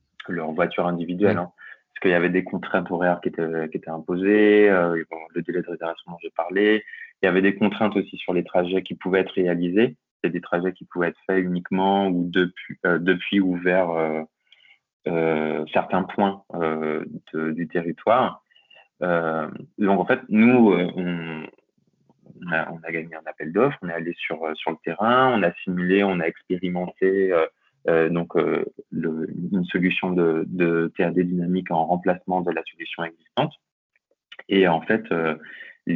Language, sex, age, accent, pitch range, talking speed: French, male, 20-39, French, 85-95 Hz, 180 wpm